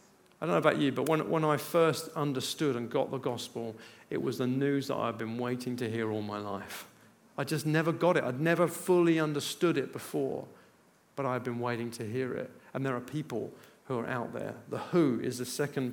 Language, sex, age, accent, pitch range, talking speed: English, male, 50-69, British, 130-160 Hz, 220 wpm